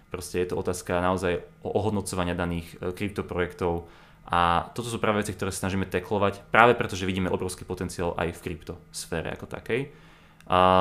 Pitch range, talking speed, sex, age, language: 90-95 Hz, 160 wpm, male, 20-39, Czech